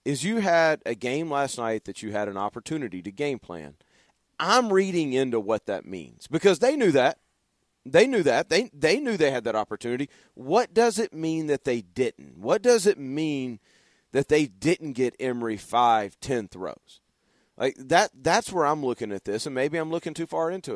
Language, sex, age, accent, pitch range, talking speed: English, male, 40-59, American, 120-160 Hz, 200 wpm